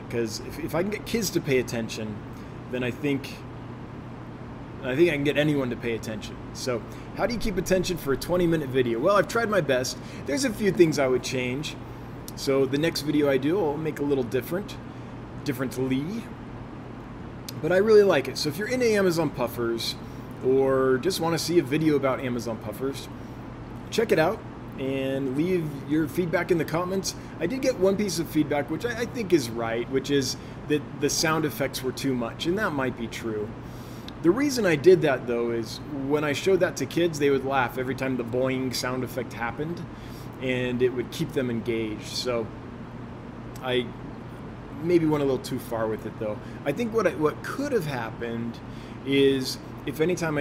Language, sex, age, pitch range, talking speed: English, male, 20-39, 125-160 Hz, 195 wpm